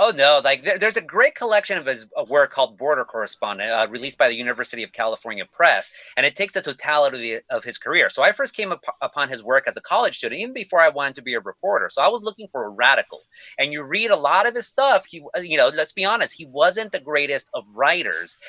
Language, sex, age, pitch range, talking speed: English, male, 30-49, 140-205 Hz, 245 wpm